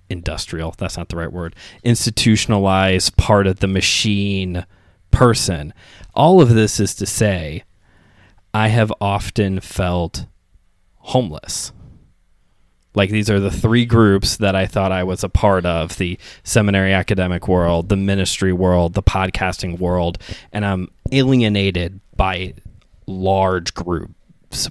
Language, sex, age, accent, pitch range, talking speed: English, male, 20-39, American, 90-105 Hz, 130 wpm